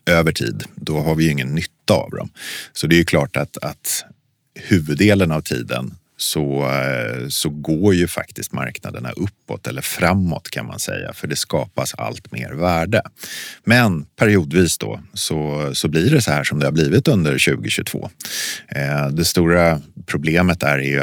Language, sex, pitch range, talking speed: Swedish, male, 75-100 Hz, 165 wpm